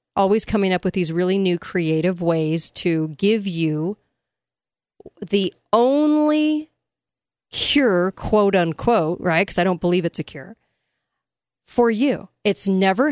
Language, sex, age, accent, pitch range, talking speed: English, female, 40-59, American, 175-230 Hz, 135 wpm